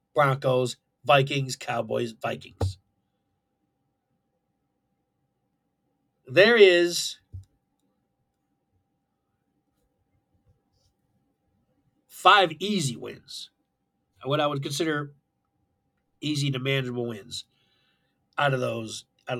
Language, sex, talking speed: English, male, 65 wpm